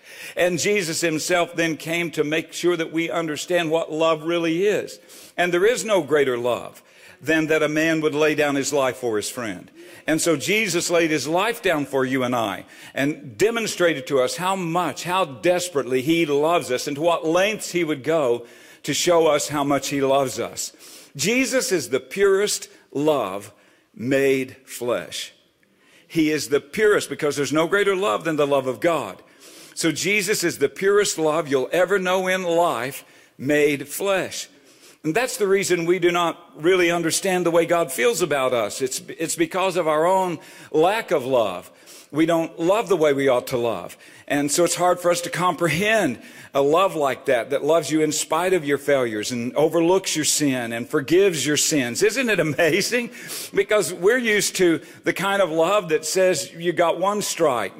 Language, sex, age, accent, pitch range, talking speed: English, male, 60-79, American, 150-190 Hz, 190 wpm